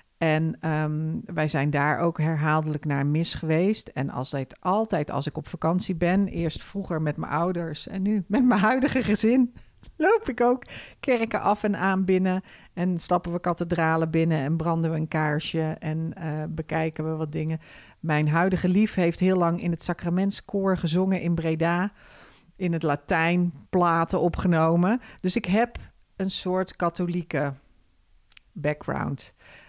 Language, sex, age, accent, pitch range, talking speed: Dutch, female, 40-59, Dutch, 155-190 Hz, 155 wpm